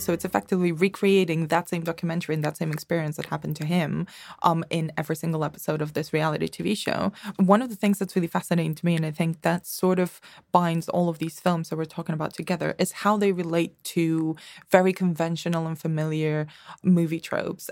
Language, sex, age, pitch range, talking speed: English, female, 20-39, 160-180 Hz, 205 wpm